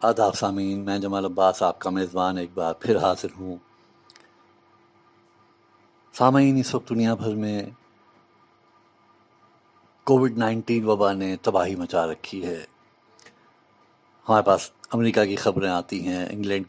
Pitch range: 95-140 Hz